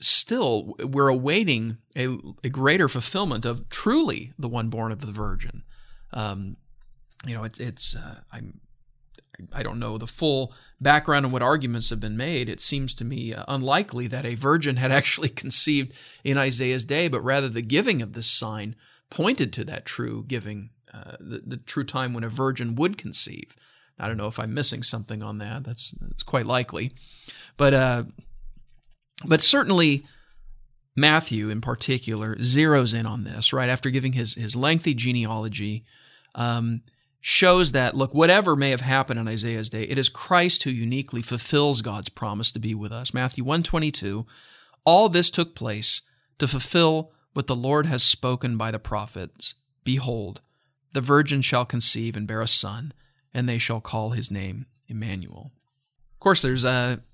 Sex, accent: male, American